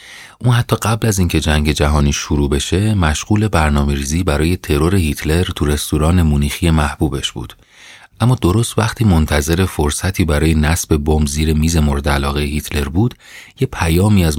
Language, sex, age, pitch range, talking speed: Persian, male, 40-59, 75-95 Hz, 155 wpm